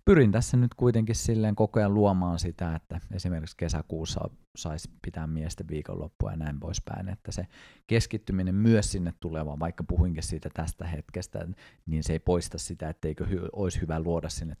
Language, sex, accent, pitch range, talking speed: Finnish, male, native, 80-100 Hz, 165 wpm